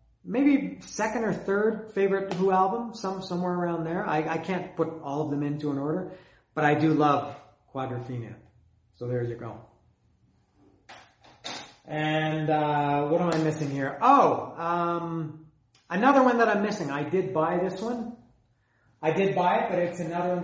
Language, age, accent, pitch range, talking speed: English, 40-59, American, 130-175 Hz, 165 wpm